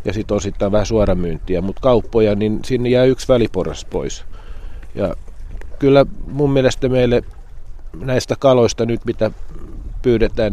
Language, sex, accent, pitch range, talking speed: Finnish, male, native, 90-120 Hz, 130 wpm